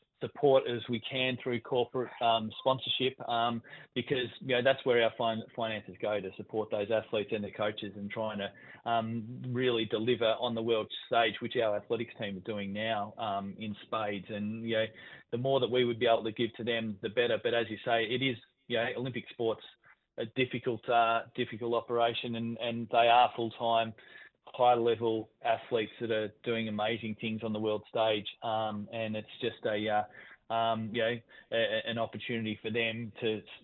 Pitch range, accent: 110-120 Hz, Australian